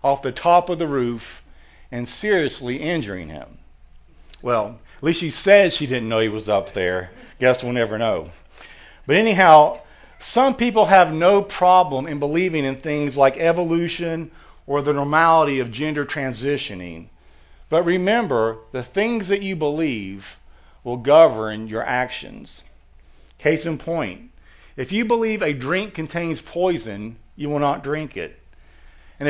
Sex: male